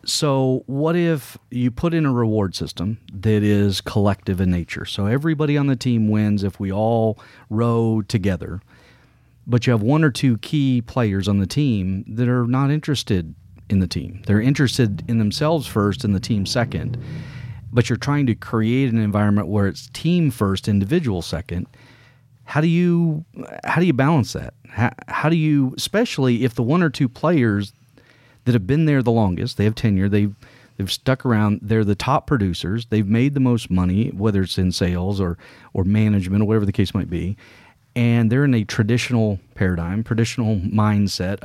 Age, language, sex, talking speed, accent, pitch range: 40-59, English, male, 185 wpm, American, 105-130 Hz